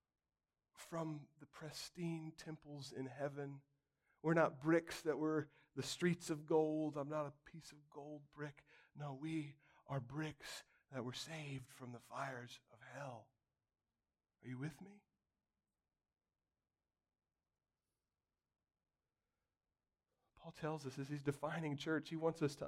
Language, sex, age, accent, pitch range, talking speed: English, male, 40-59, American, 150-240 Hz, 130 wpm